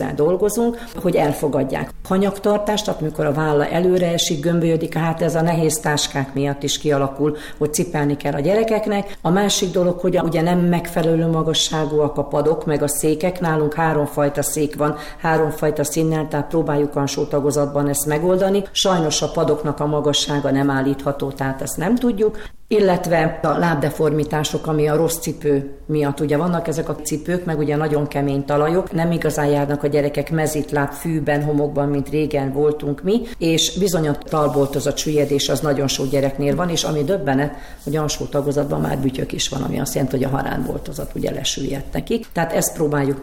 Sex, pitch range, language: female, 145-165 Hz, Hungarian